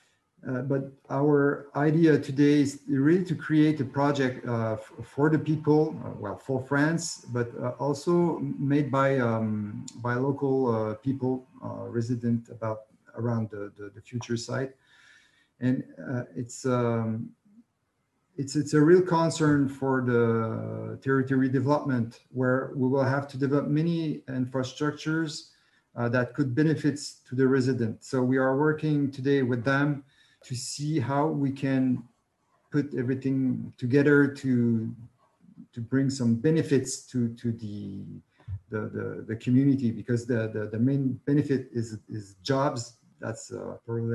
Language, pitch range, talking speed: English, 120-140 Hz, 140 wpm